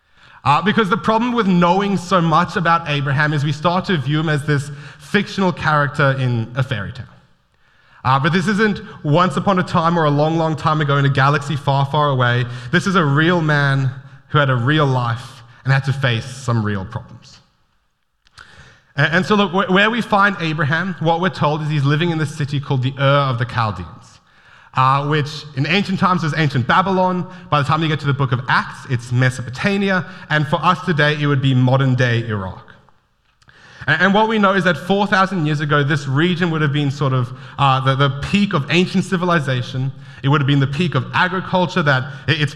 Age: 30-49